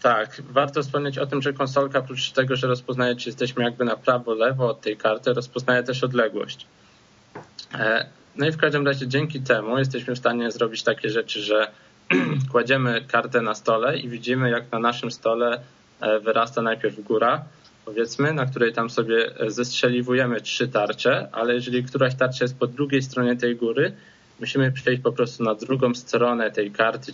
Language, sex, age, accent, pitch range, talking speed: Polish, male, 20-39, native, 115-130 Hz, 170 wpm